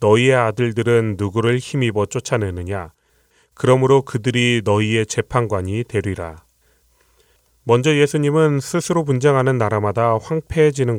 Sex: male